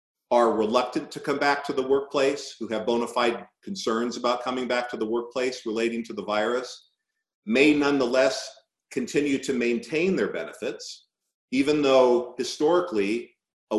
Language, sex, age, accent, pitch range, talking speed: English, male, 50-69, American, 110-145 Hz, 150 wpm